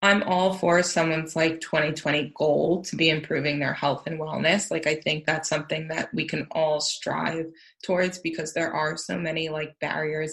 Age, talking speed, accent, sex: 20-39, 185 wpm, American, female